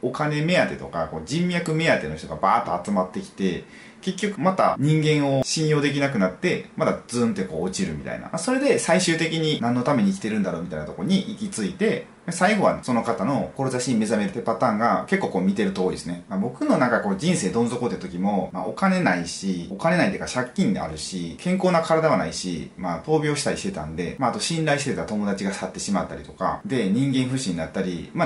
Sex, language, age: male, Japanese, 30-49